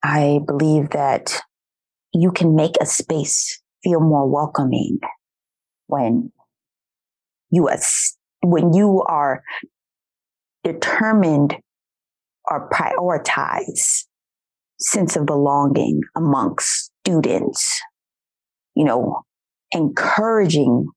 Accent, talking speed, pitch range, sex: American, 75 wpm, 160-215 Hz, female